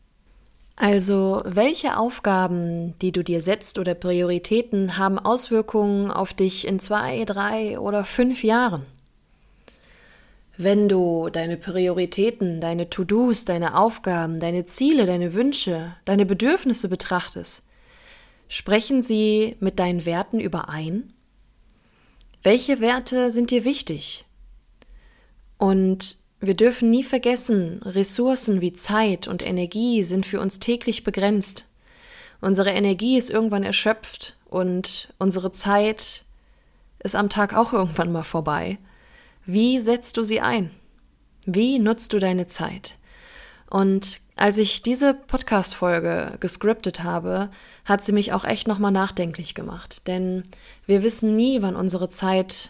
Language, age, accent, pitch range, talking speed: German, 20-39, German, 185-225 Hz, 120 wpm